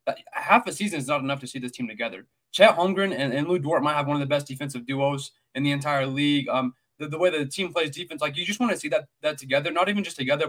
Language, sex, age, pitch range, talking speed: English, male, 20-39, 135-165 Hz, 285 wpm